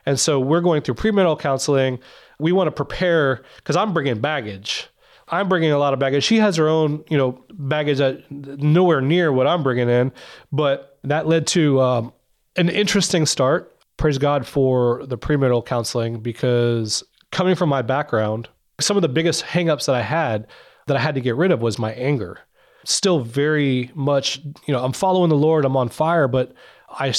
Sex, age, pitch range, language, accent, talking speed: male, 30-49, 125-160 Hz, English, American, 190 wpm